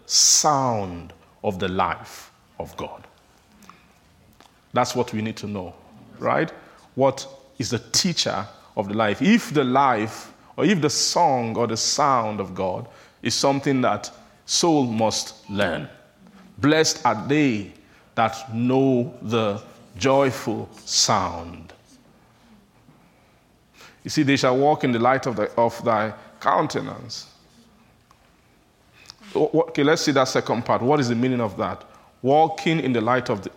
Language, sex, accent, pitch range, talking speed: English, male, Nigerian, 115-145 Hz, 135 wpm